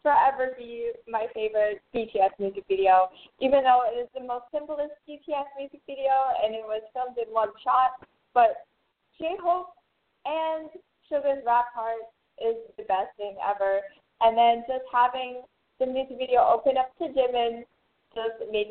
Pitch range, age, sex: 230-285 Hz, 20-39, female